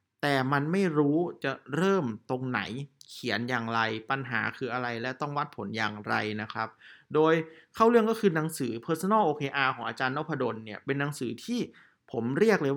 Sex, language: male, Thai